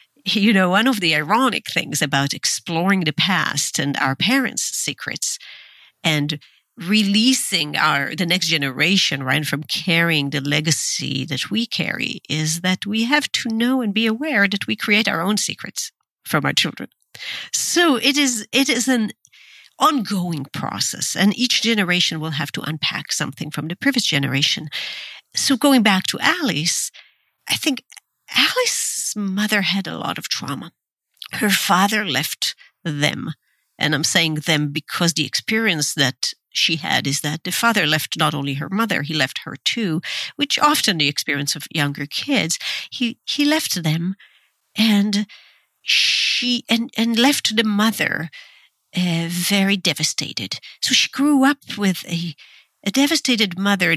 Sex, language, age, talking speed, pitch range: female, English, 50-69, 155 wpm, 155-235 Hz